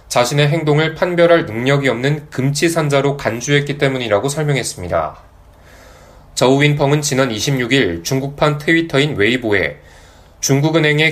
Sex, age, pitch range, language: male, 20-39, 120-150 Hz, Korean